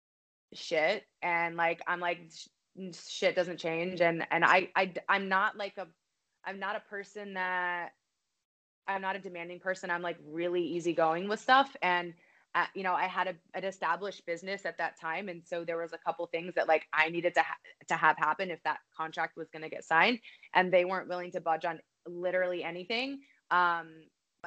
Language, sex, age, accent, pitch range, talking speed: English, female, 20-39, American, 165-190 Hz, 195 wpm